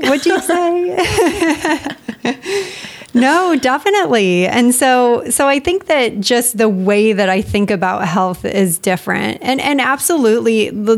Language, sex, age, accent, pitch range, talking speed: English, female, 30-49, American, 210-265 Hz, 135 wpm